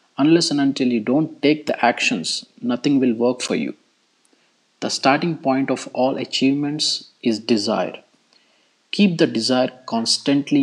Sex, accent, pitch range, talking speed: male, Indian, 125-175 Hz, 140 wpm